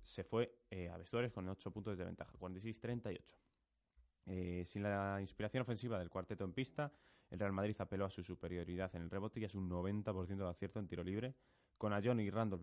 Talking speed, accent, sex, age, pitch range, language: 205 wpm, Spanish, male, 20-39, 90-110 Hz, Spanish